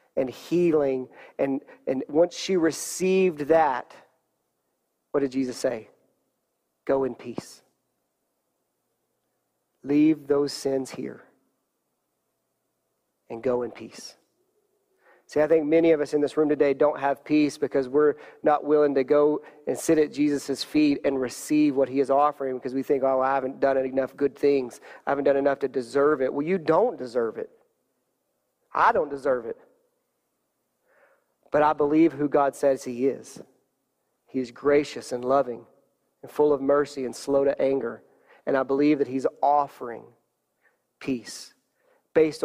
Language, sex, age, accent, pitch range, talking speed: English, male, 40-59, American, 135-155 Hz, 155 wpm